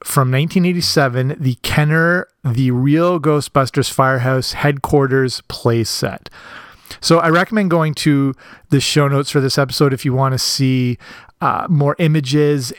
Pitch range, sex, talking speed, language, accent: 130-155 Hz, male, 135 wpm, English, American